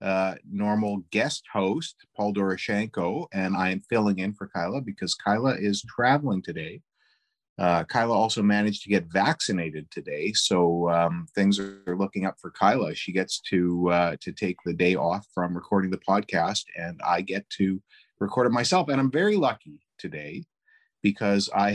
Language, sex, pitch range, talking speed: English, male, 90-110 Hz, 170 wpm